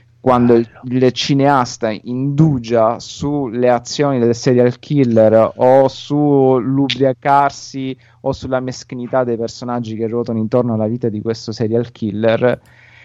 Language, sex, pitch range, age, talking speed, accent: Italian, male, 110-125 Hz, 30-49, 120 wpm, native